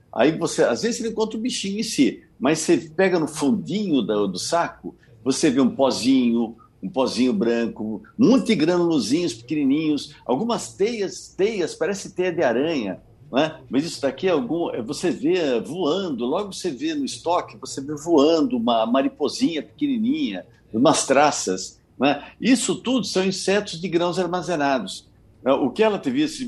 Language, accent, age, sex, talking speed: Portuguese, Brazilian, 60-79, male, 155 wpm